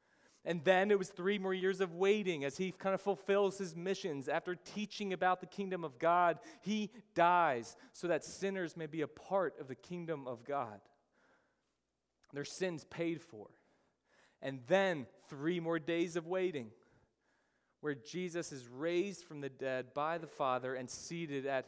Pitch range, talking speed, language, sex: 135-180 Hz, 170 wpm, English, male